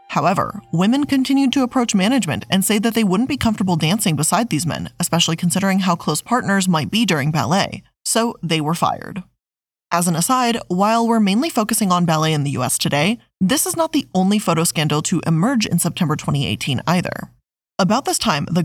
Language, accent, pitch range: English, American, 165-225 Hz